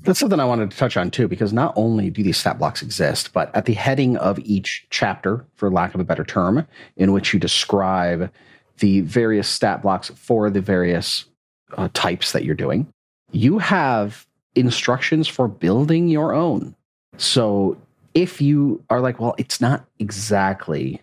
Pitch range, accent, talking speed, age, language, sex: 100-145 Hz, American, 175 wpm, 40-59, English, male